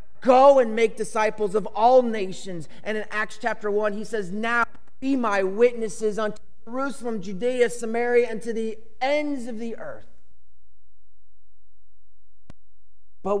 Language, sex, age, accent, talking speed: English, male, 30-49, American, 135 wpm